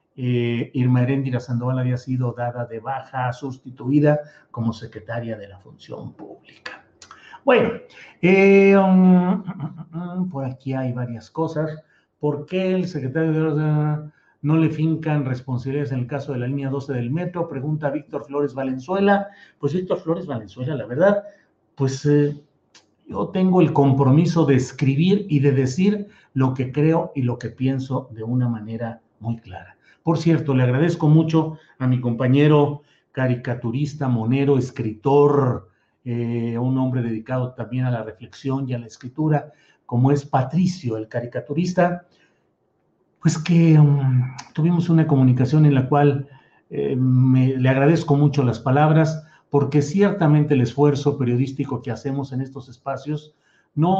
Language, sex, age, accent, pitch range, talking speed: Spanish, male, 50-69, Mexican, 125-160 Hz, 145 wpm